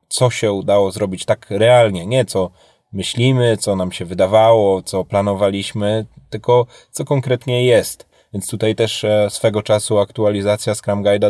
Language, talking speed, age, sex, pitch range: Polish, 145 wpm, 20-39, male, 100-115 Hz